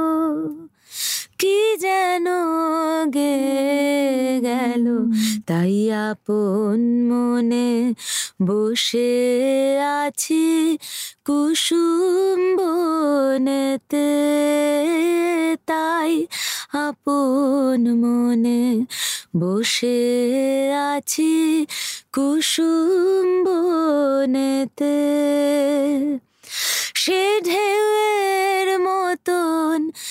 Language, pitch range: Bengali, 255-335 Hz